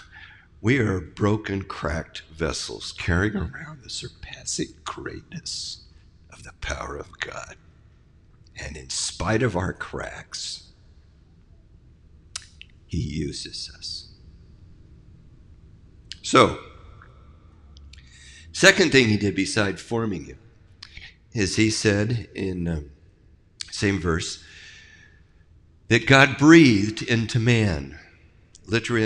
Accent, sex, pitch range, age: American, male, 85-110 Hz, 60-79